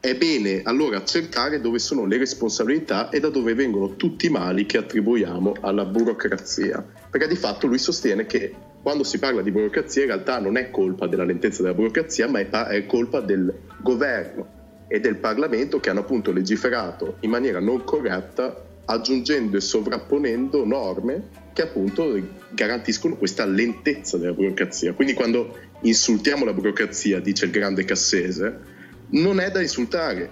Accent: native